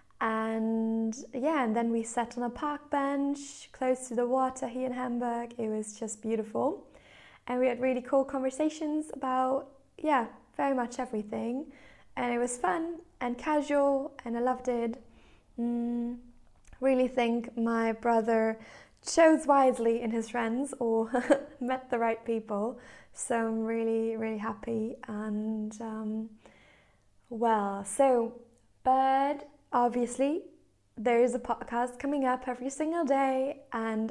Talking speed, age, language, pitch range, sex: 135 wpm, 20-39, English, 220-260 Hz, female